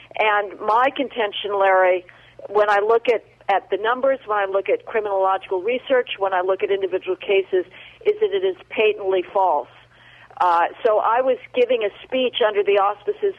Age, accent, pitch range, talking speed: 50-69, American, 185-240 Hz, 175 wpm